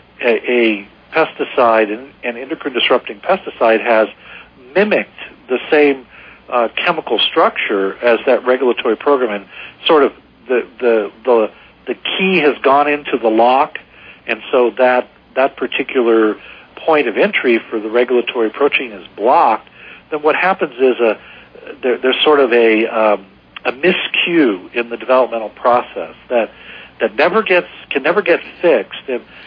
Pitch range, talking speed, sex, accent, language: 115-140 Hz, 150 wpm, male, American, English